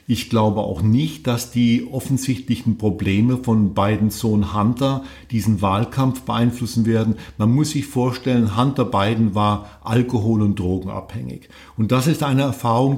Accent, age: German, 50-69